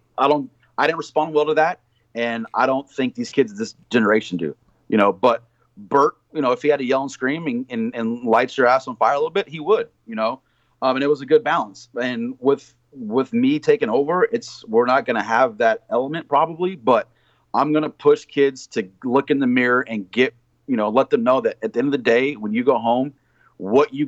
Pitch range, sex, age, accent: 120-175 Hz, male, 30-49, American